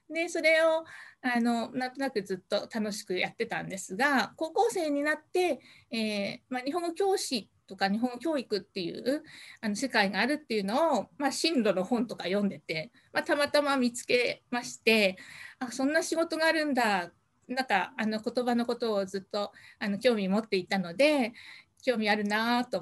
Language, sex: Japanese, female